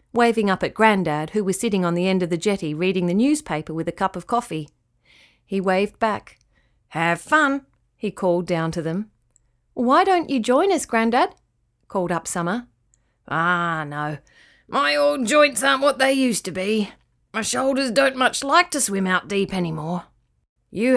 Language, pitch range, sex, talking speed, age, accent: English, 170-250 Hz, female, 175 wpm, 30-49, Australian